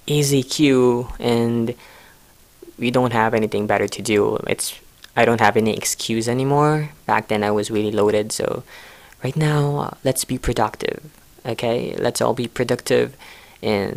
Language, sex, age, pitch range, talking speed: English, female, 20-39, 105-130 Hz, 150 wpm